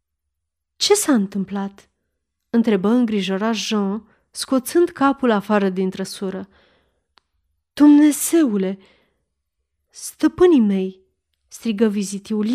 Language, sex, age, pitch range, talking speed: Romanian, female, 30-49, 190-245 Hz, 70 wpm